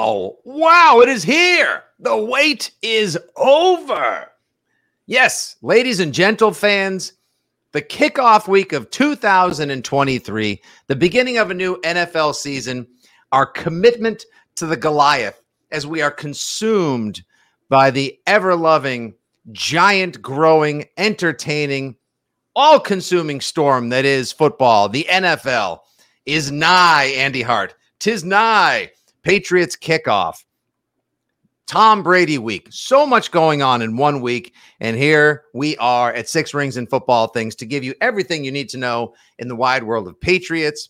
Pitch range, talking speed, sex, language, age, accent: 125-180 Hz, 130 wpm, male, English, 50-69, American